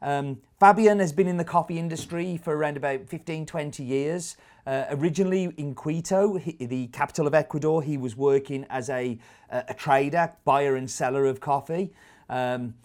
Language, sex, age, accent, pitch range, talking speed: English, male, 30-49, British, 125-155 Hz, 165 wpm